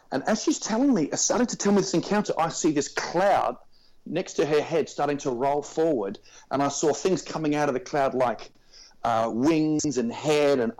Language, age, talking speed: English, 40-59, 210 wpm